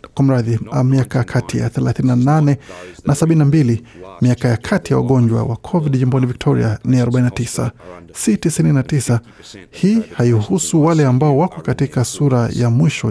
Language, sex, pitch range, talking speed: Swahili, male, 120-145 Hz, 135 wpm